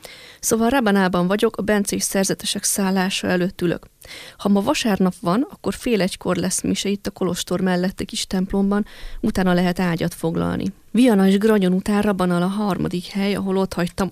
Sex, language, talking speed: female, Hungarian, 165 wpm